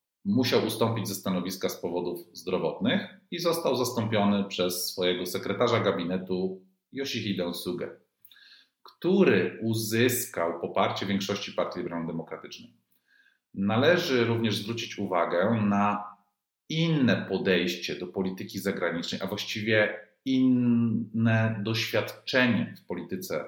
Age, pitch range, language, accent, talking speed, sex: 40-59, 95-120 Hz, Polish, native, 100 wpm, male